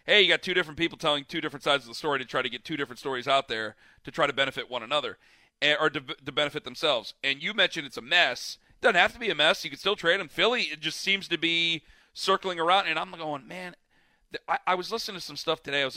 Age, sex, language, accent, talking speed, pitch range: 40-59, male, English, American, 280 wpm, 140-175 Hz